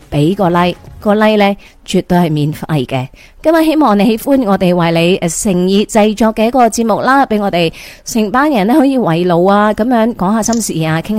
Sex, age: female, 30-49